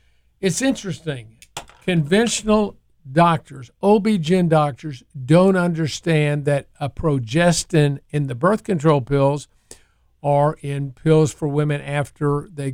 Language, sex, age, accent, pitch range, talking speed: English, male, 50-69, American, 135-165 Hz, 110 wpm